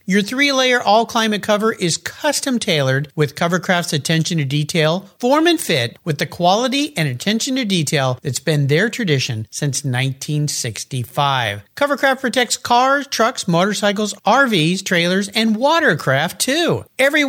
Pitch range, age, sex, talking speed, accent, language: 150-230 Hz, 50-69, male, 120 wpm, American, English